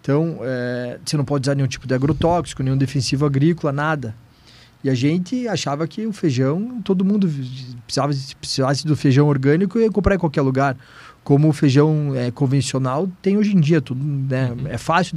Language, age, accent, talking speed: Portuguese, 20-39, Brazilian, 180 wpm